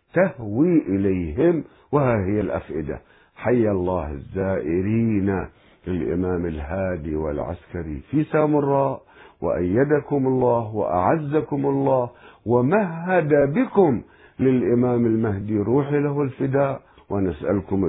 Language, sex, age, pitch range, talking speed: Arabic, male, 50-69, 85-125 Hz, 85 wpm